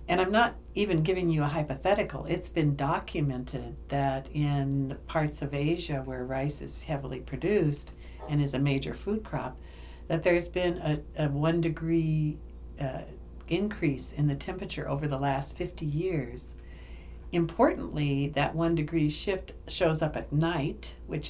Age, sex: 60-79, female